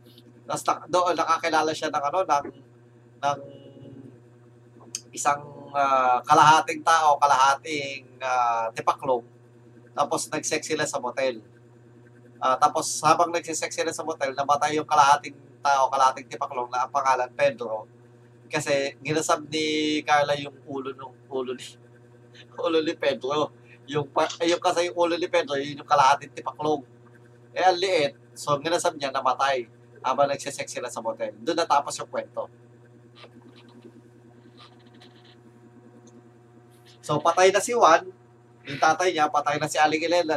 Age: 20-39